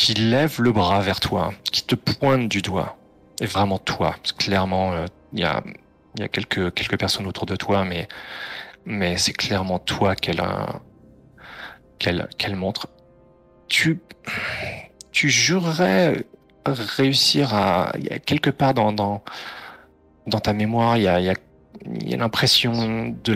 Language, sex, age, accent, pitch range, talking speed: French, male, 30-49, French, 90-110 Hz, 155 wpm